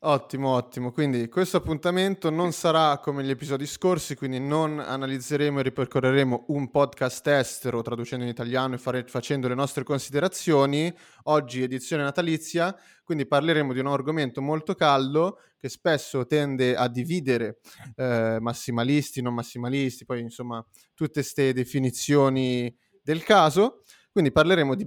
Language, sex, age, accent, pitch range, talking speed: Italian, male, 30-49, native, 125-160 Hz, 140 wpm